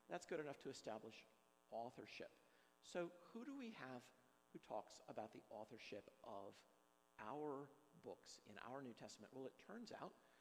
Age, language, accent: 50-69, English, American